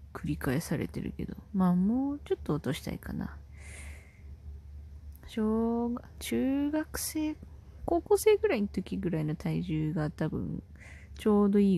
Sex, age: female, 20-39